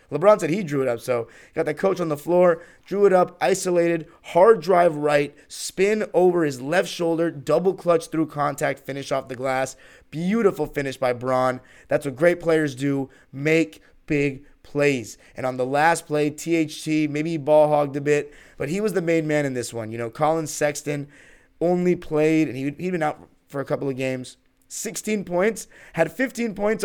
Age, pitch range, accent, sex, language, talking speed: 30-49, 135-175 Hz, American, male, English, 190 wpm